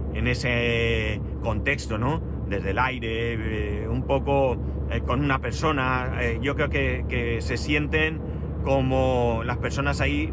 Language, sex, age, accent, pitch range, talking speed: Spanish, male, 30-49, Spanish, 75-115 Hz, 145 wpm